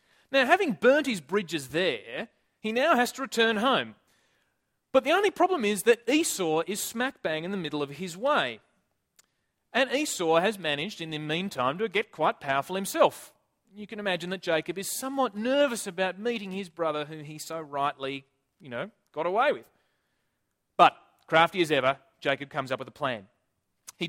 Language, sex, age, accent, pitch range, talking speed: English, male, 30-49, Australian, 140-215 Hz, 180 wpm